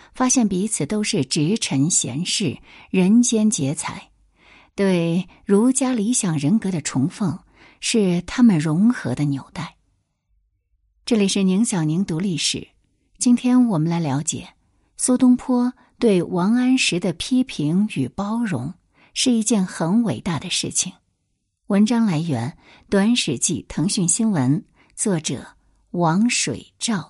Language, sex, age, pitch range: Chinese, female, 60-79, 150-235 Hz